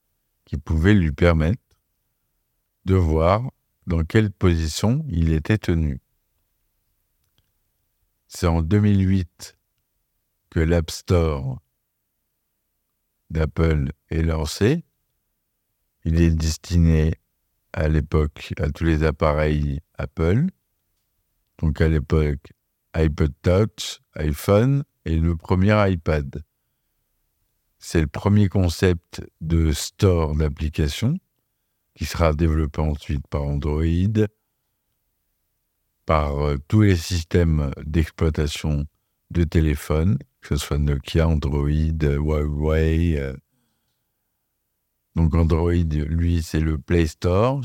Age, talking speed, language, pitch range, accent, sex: 50-69, 95 wpm, French, 75-95 Hz, French, male